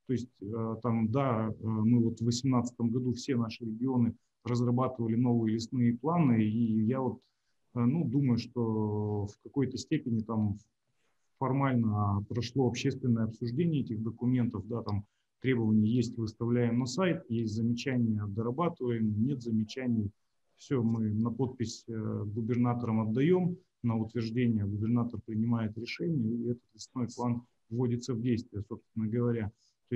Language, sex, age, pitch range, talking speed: Russian, male, 30-49, 110-125 Hz, 130 wpm